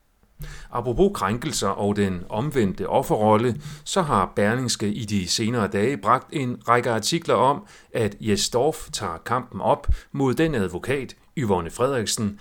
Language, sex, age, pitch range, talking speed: Danish, male, 40-59, 100-135 Hz, 135 wpm